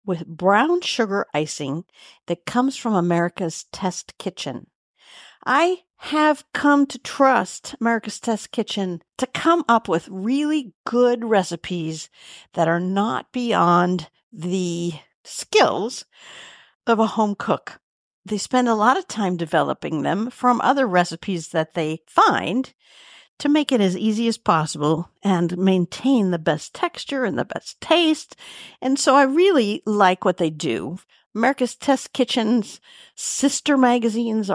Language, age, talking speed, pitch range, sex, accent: English, 50-69, 135 wpm, 175-260 Hz, female, American